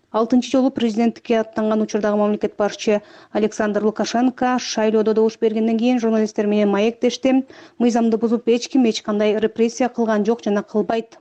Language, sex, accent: Russian, female, native